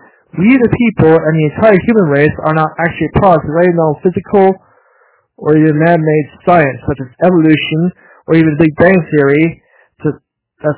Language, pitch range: English, 145-175 Hz